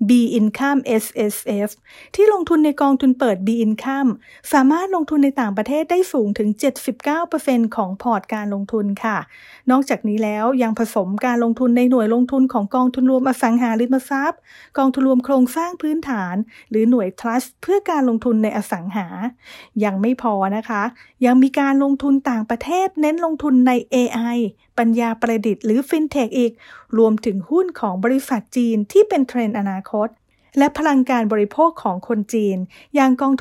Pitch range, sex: 225-275 Hz, female